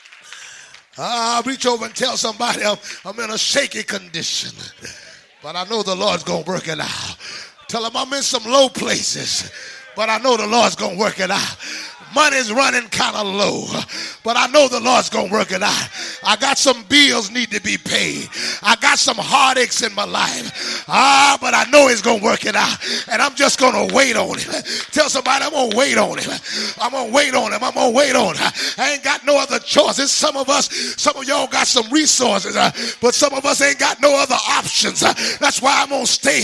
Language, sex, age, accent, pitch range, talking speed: English, male, 30-49, American, 235-280 Hz, 225 wpm